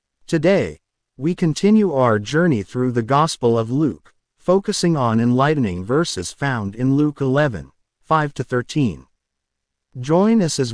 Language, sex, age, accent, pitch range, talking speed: English, male, 50-69, American, 105-160 Hz, 125 wpm